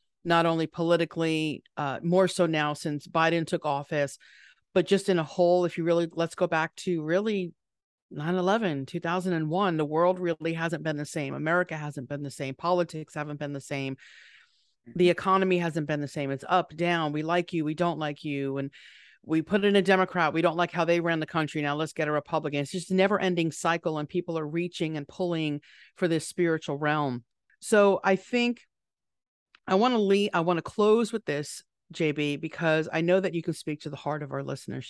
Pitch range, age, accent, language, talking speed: 145-175 Hz, 40-59, American, English, 205 wpm